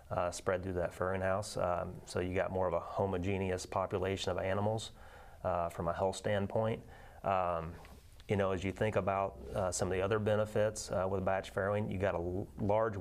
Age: 30-49